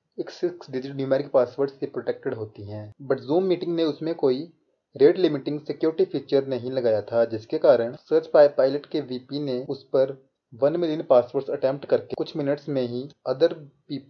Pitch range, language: 125-150 Hz, Hindi